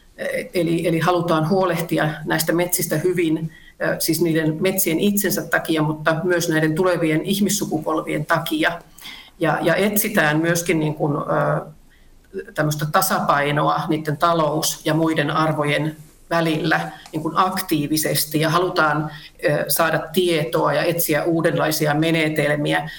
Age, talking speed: 40-59, 100 wpm